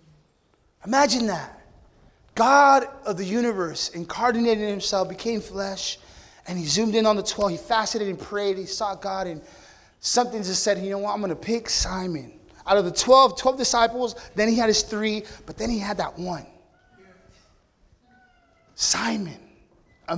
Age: 20-39